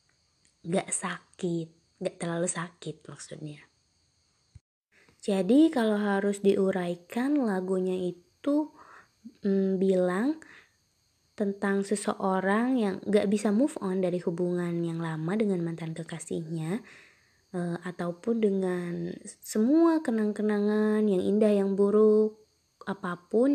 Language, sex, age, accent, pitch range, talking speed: Indonesian, female, 20-39, native, 180-215 Hz, 95 wpm